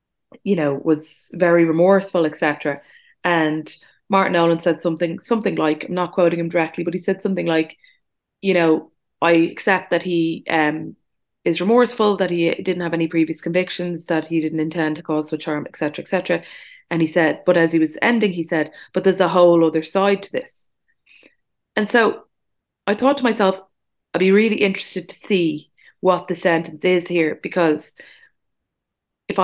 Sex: female